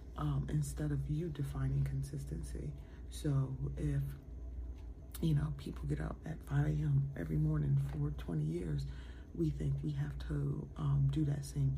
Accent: American